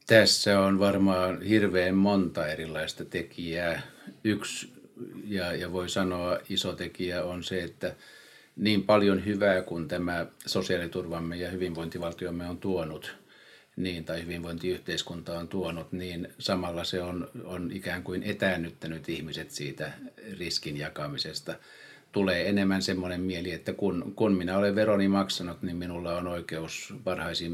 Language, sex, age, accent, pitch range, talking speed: Finnish, male, 50-69, native, 85-100 Hz, 130 wpm